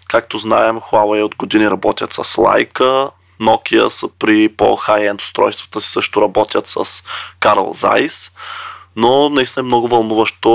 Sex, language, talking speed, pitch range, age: male, Bulgarian, 140 wpm, 110-125 Hz, 20-39